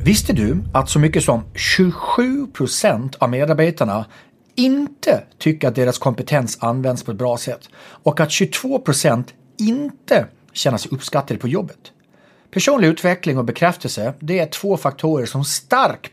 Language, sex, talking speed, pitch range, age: English, male, 140 wpm, 120-175 Hz, 40-59